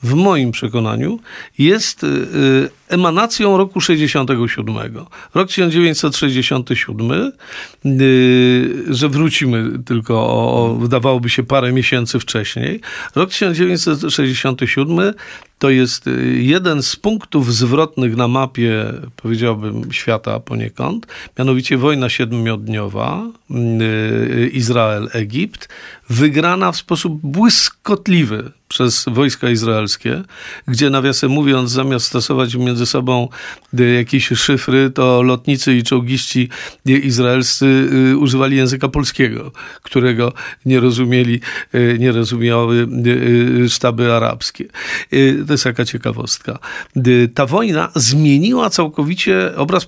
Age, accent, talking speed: 50-69, native, 90 wpm